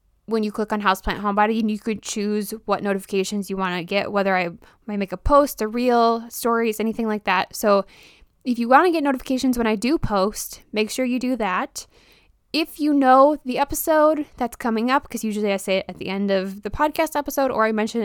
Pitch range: 205-265 Hz